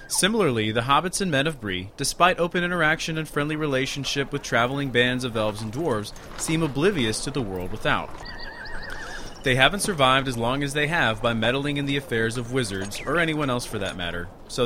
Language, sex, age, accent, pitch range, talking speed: English, male, 30-49, American, 115-155 Hz, 195 wpm